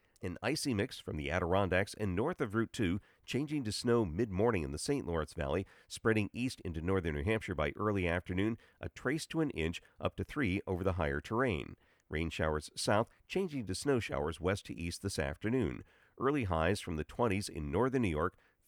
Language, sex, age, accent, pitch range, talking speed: English, male, 50-69, American, 85-110 Hz, 200 wpm